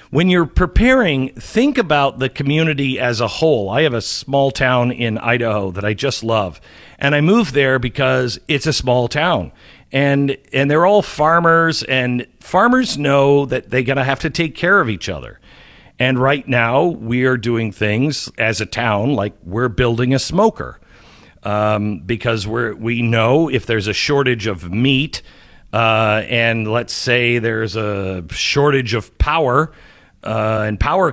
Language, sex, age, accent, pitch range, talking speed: English, male, 50-69, American, 115-145 Hz, 165 wpm